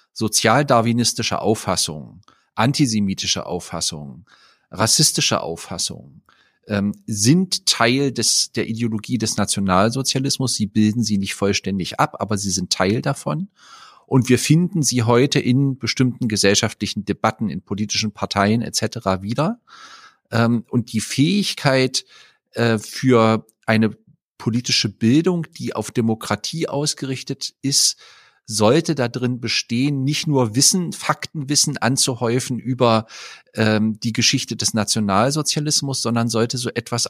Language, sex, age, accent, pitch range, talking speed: German, male, 40-59, German, 110-135 Hz, 115 wpm